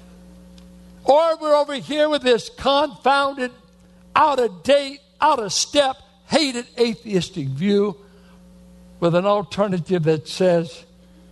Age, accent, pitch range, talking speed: 60-79, American, 165-250 Hz, 90 wpm